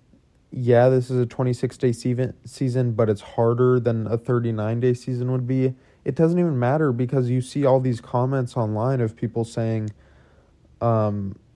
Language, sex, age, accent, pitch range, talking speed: English, male, 20-39, American, 110-125 Hz, 155 wpm